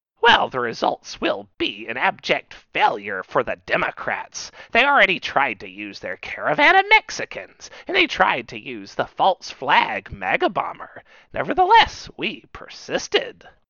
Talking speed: 140 wpm